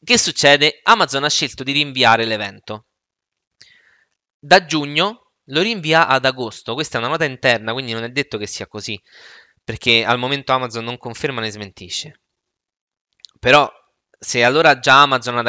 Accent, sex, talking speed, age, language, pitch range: native, male, 155 wpm, 20-39, Italian, 115-155 Hz